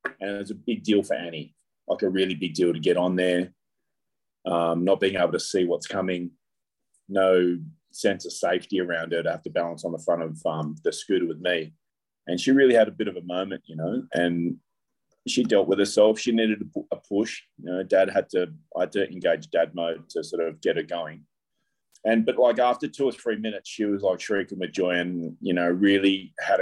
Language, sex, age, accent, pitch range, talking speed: English, male, 30-49, Australian, 90-120 Hz, 225 wpm